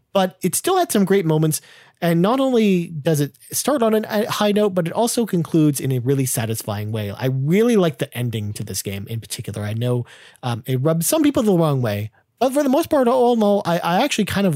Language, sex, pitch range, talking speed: English, male, 125-170 Hz, 245 wpm